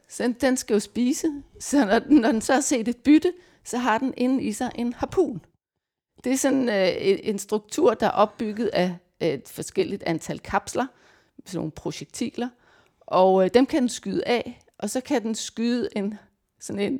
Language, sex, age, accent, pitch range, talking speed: Danish, female, 30-49, native, 195-260 Hz, 180 wpm